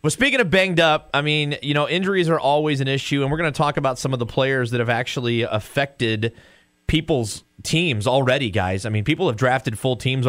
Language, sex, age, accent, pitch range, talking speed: English, male, 30-49, American, 105-140 Hz, 225 wpm